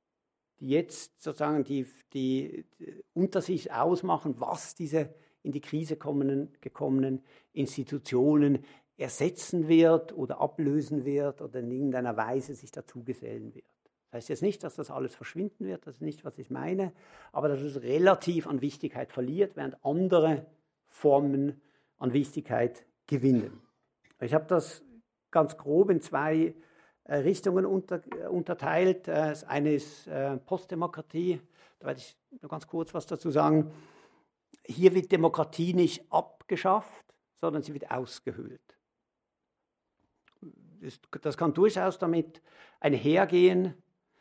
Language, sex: German, male